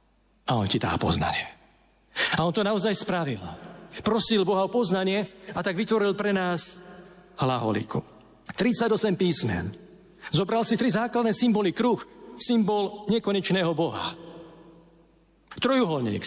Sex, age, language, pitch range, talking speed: male, 50-69, Slovak, 165-225 Hz, 115 wpm